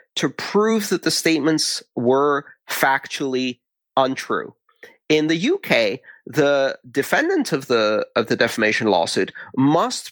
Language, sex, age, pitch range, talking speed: English, male, 30-49, 115-160 Hz, 115 wpm